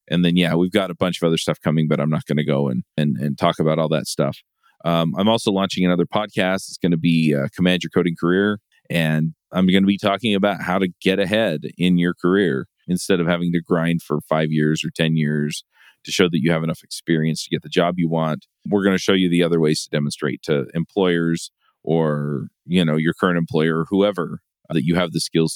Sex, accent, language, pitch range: male, American, English, 80-95 Hz